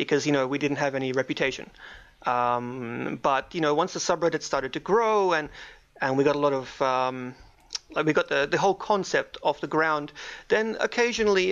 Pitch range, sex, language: 140-180 Hz, male, English